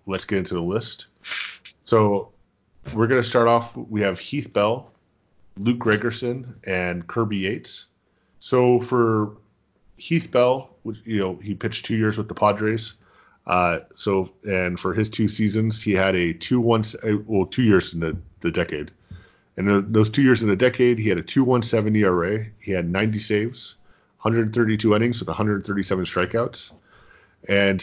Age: 30-49